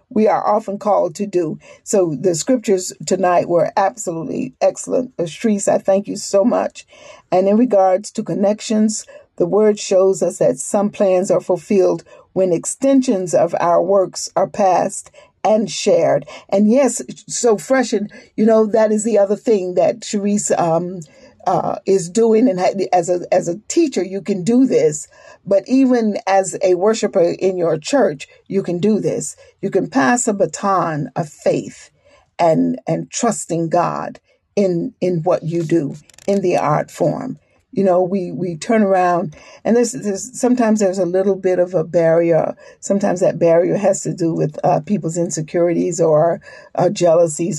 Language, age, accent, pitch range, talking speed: English, 50-69, American, 175-215 Hz, 170 wpm